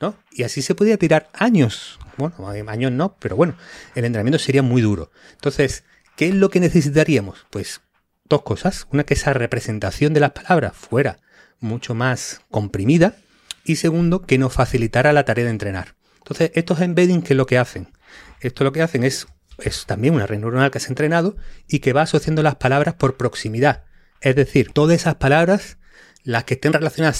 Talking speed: 190 wpm